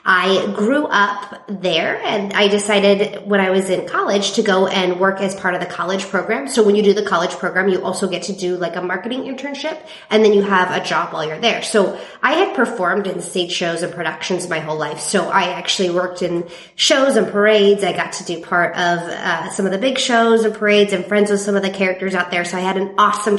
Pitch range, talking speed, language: 175-210 Hz, 245 wpm, English